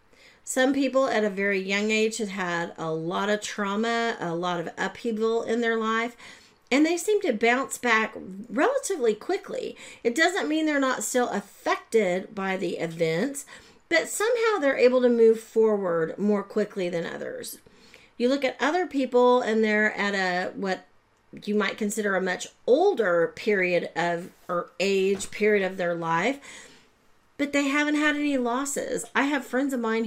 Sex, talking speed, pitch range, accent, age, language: female, 170 wpm, 195-255 Hz, American, 40-59, English